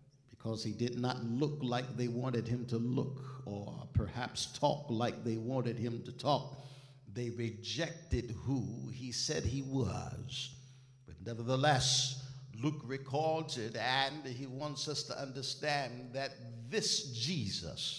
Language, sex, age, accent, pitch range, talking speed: English, male, 60-79, American, 120-145 Hz, 135 wpm